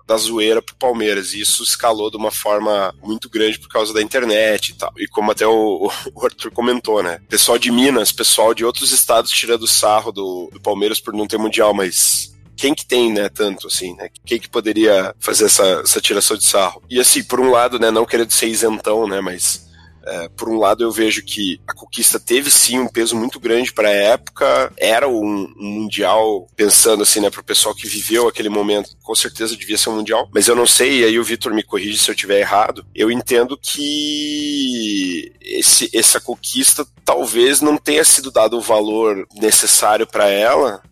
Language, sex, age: Portuguese, male, 20-39